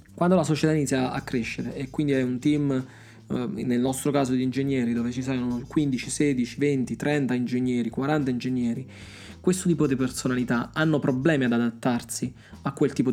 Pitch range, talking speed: 125-155 Hz, 170 wpm